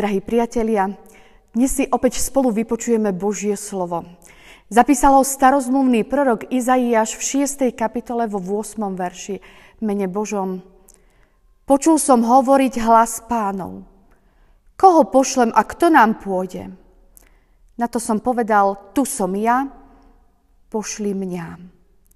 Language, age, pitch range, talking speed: Slovak, 40-59, 205-260 Hz, 110 wpm